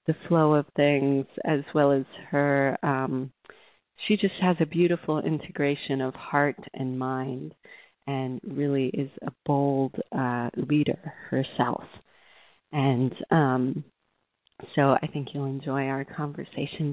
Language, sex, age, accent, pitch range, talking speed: English, female, 40-59, American, 140-170 Hz, 130 wpm